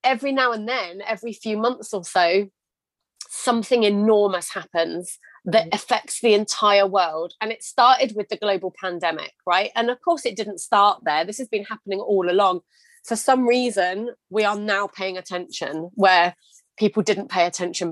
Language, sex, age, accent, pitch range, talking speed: English, female, 30-49, British, 180-225 Hz, 170 wpm